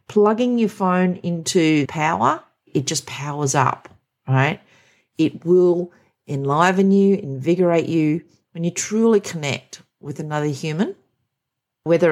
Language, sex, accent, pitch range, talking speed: English, female, Australian, 140-190 Hz, 125 wpm